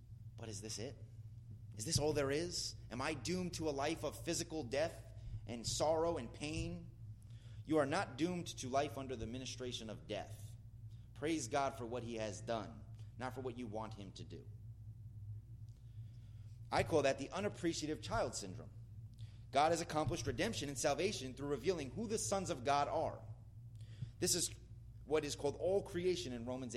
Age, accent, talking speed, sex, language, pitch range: 30-49, American, 175 wpm, male, English, 110-145 Hz